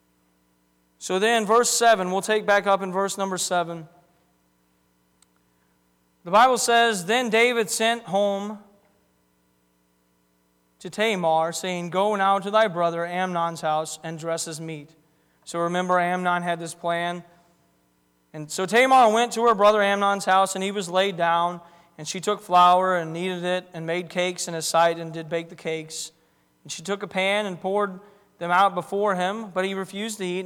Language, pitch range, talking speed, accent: English, 160-195 Hz, 170 wpm, American